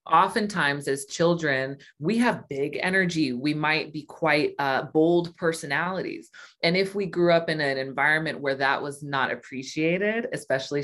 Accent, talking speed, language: American, 155 wpm, English